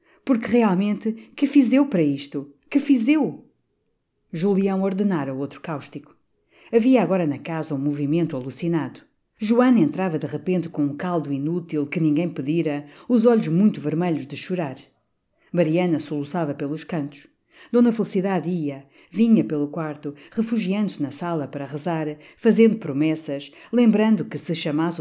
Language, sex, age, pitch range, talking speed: Portuguese, female, 50-69, 150-190 Hz, 145 wpm